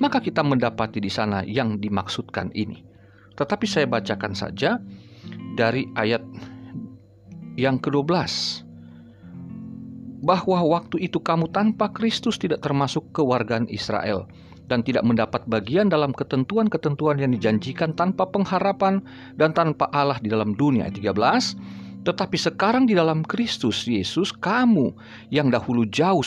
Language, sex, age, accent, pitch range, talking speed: Indonesian, male, 40-59, native, 110-175 Hz, 125 wpm